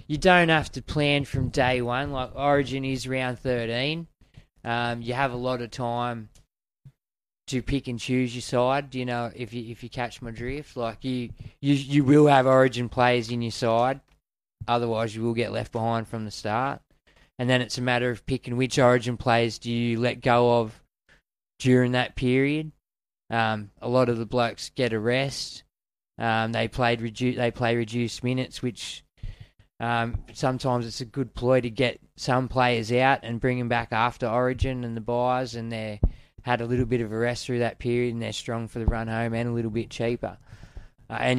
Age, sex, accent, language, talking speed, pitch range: 20-39, male, Australian, English, 200 wpm, 115-130 Hz